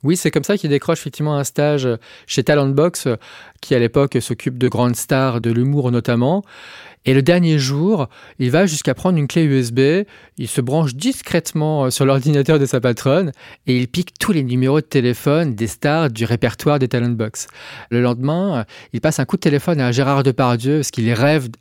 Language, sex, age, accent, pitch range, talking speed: French, male, 30-49, French, 115-150 Hz, 190 wpm